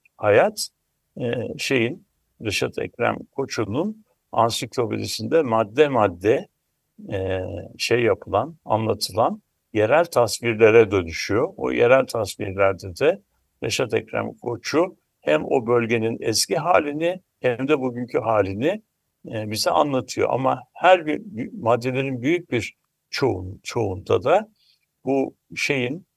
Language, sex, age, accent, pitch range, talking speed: Turkish, male, 60-79, native, 110-140 Hz, 95 wpm